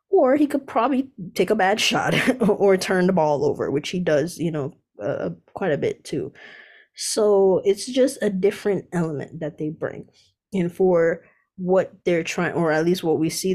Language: English